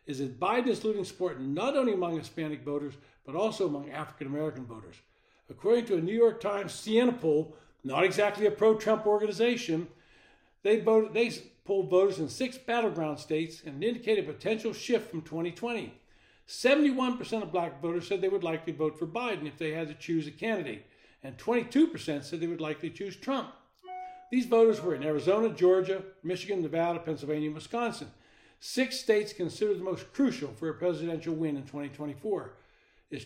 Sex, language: male, English